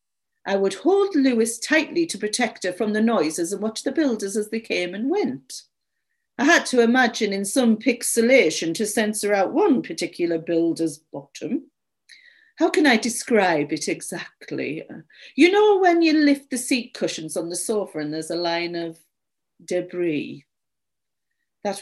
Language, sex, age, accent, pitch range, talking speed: English, female, 50-69, British, 180-265 Hz, 160 wpm